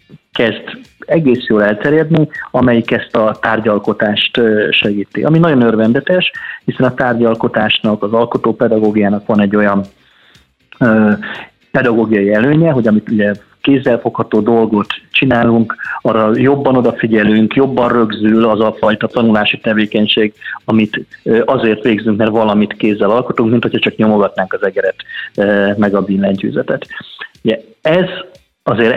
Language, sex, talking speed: Hungarian, male, 120 wpm